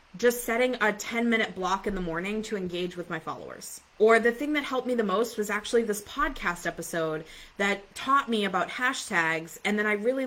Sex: female